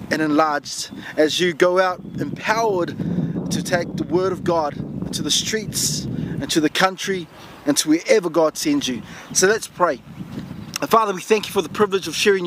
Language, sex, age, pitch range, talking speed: English, male, 20-39, 170-205 Hz, 180 wpm